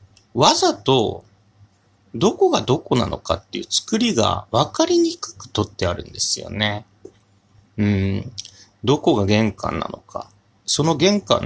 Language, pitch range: Japanese, 100-155 Hz